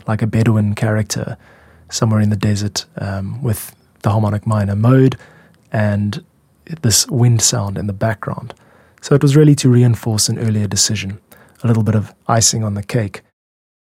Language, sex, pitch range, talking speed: English, male, 110-135 Hz, 165 wpm